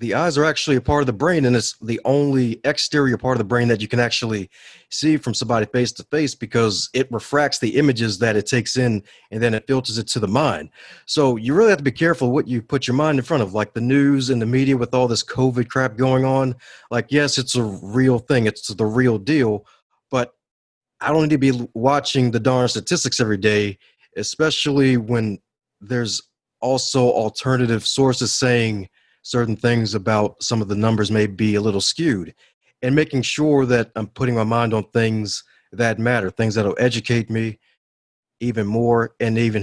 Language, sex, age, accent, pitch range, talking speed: English, male, 30-49, American, 110-130 Hz, 205 wpm